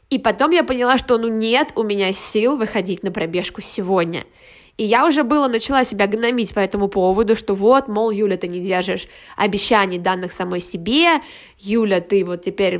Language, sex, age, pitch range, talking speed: Russian, female, 20-39, 210-255 Hz, 185 wpm